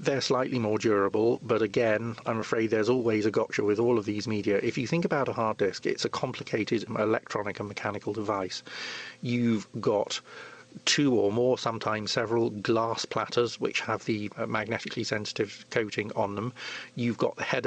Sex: male